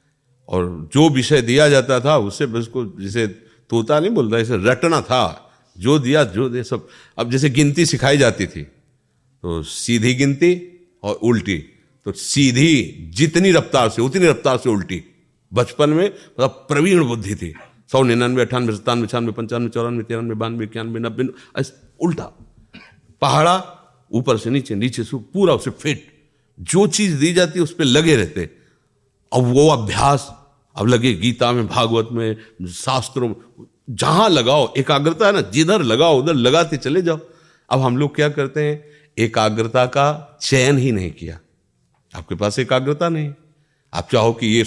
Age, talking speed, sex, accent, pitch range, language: 50-69, 155 wpm, male, native, 115-150 Hz, Hindi